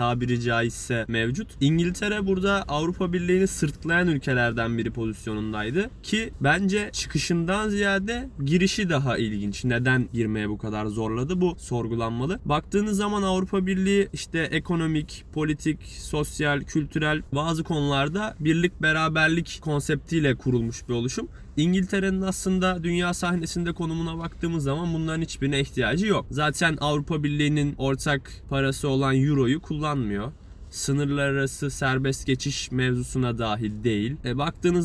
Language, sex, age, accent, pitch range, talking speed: Turkish, male, 20-39, native, 130-170 Hz, 120 wpm